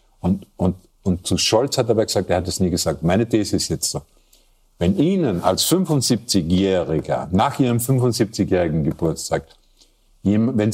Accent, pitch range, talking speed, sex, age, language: German, 90-110 Hz, 155 wpm, male, 50-69, German